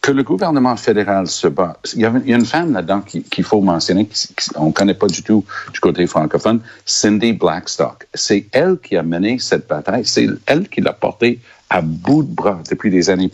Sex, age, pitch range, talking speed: male, 60-79, 90-110 Hz, 205 wpm